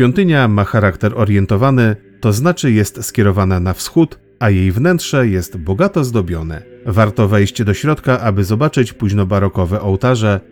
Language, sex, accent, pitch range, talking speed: Polish, male, native, 100-130 Hz, 135 wpm